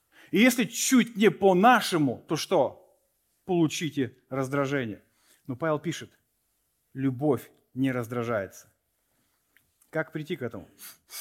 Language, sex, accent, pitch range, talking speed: Russian, male, native, 125-165 Hz, 100 wpm